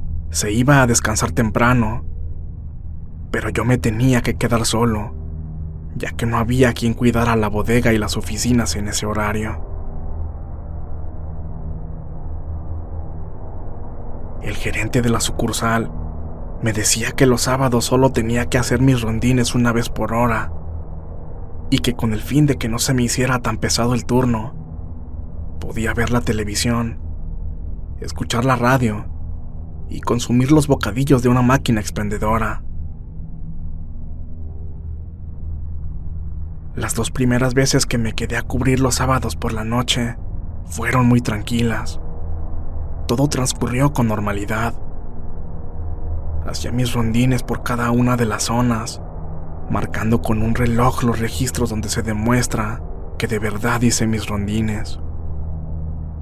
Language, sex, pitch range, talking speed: Spanish, male, 80-120 Hz, 130 wpm